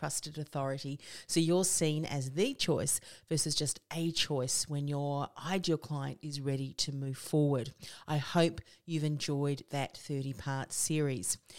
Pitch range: 145-180 Hz